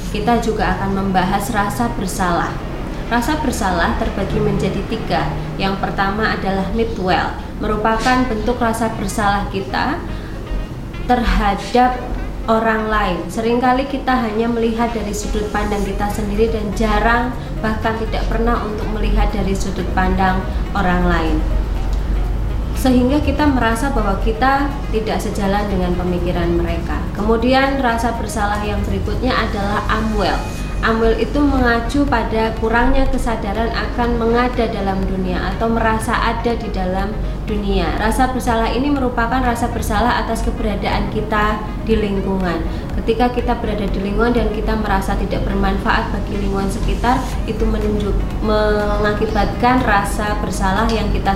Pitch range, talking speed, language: 195-235 Hz, 125 wpm, Indonesian